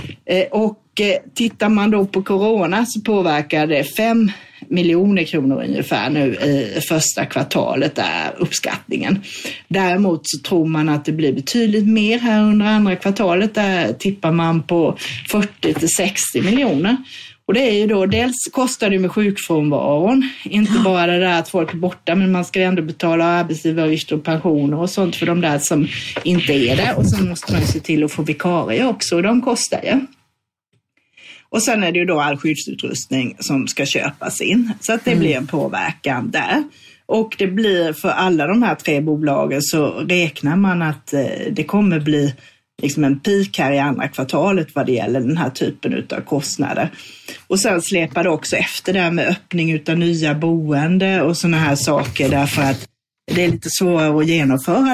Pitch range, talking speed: 150-205 Hz, 180 wpm